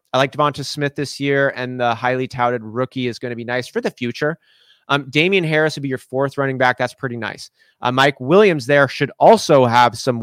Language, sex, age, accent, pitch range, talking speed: English, male, 30-49, American, 120-150 Hz, 230 wpm